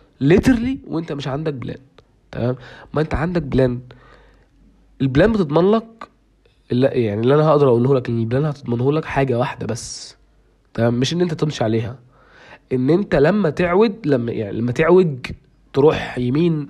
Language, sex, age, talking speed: Arabic, male, 20-39, 160 wpm